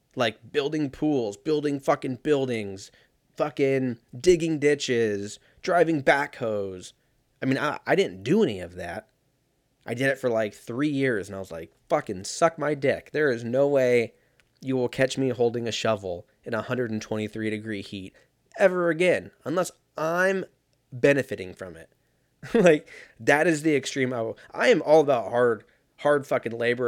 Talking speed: 160 wpm